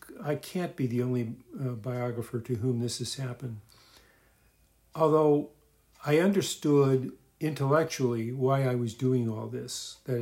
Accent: American